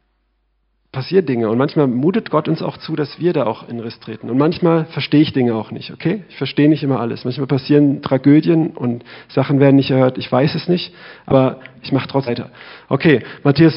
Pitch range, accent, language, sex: 125-150 Hz, German, German, male